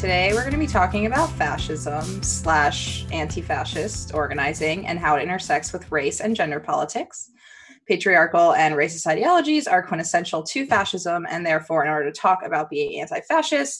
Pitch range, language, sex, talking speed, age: 155-245 Hz, English, female, 160 wpm, 20-39